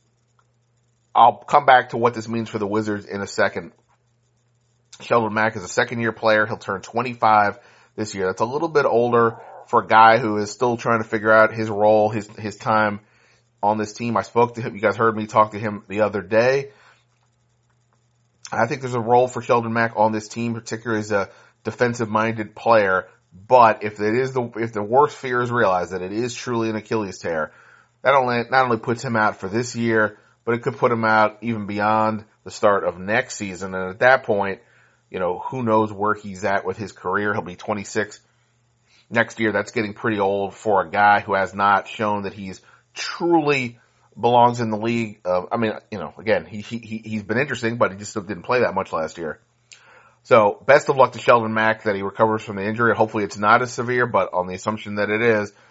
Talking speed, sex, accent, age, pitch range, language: 220 wpm, male, American, 30-49, 105-120 Hz, English